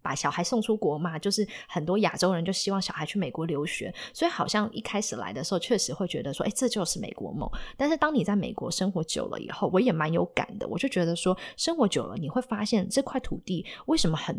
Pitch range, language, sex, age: 175-230 Hz, Chinese, female, 20-39